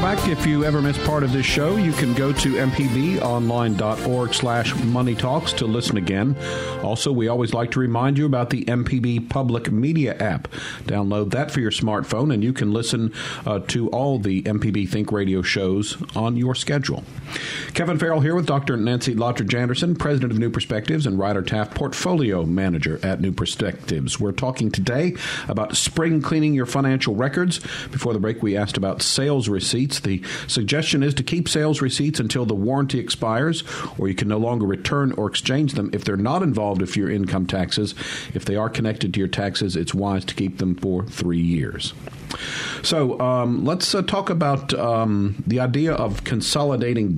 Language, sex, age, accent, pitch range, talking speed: English, male, 50-69, American, 105-140 Hz, 180 wpm